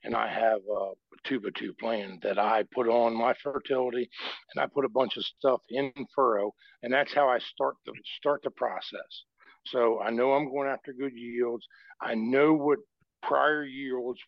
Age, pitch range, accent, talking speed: 60-79, 120-145 Hz, American, 185 wpm